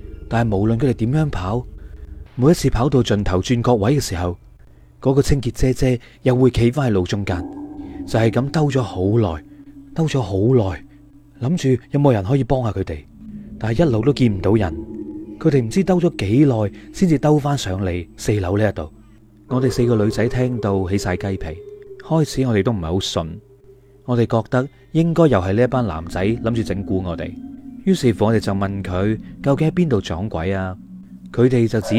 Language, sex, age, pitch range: Chinese, male, 30-49, 100-140 Hz